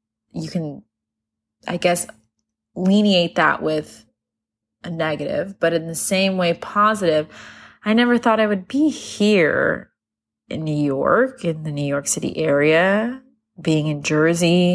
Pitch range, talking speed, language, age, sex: 160-205 Hz, 140 wpm, English, 20-39, female